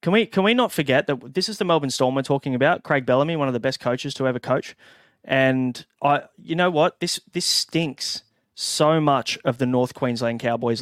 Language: English